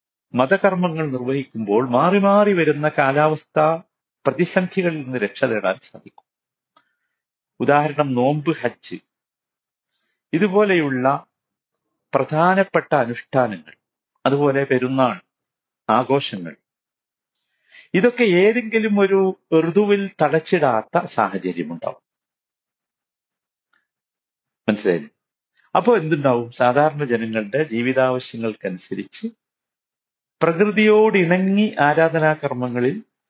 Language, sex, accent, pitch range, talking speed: Malayalam, male, native, 125-175 Hz, 65 wpm